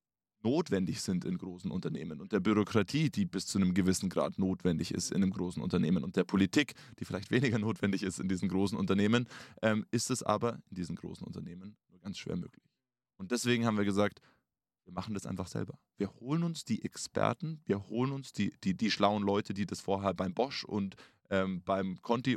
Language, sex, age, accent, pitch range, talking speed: German, male, 20-39, German, 100-125 Hz, 205 wpm